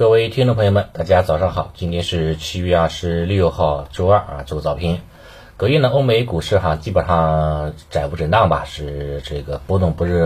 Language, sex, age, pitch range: Chinese, male, 30-49, 75-90 Hz